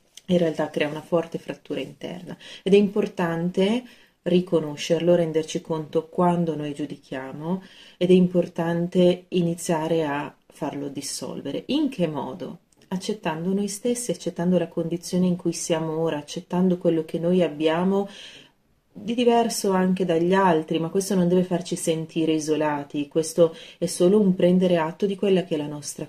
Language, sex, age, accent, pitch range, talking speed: Italian, female, 30-49, native, 160-185 Hz, 150 wpm